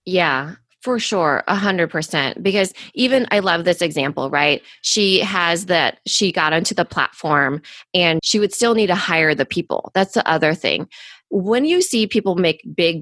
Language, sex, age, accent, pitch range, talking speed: English, female, 20-39, American, 160-215 Hz, 185 wpm